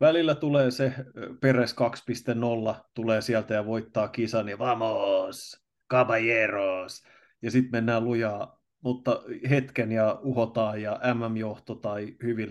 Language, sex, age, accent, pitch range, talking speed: Finnish, male, 30-49, native, 110-130 Hz, 125 wpm